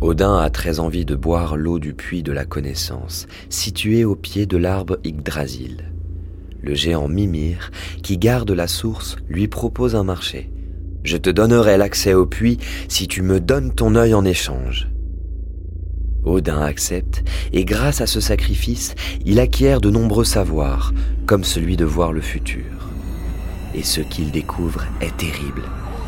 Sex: male